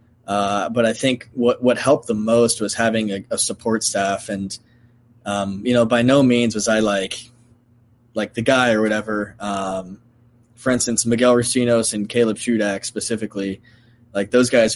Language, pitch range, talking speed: English, 100-115 Hz, 170 wpm